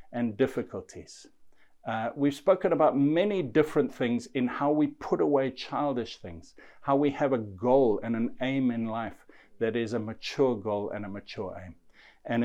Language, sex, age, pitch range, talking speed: English, male, 50-69, 115-140 Hz, 175 wpm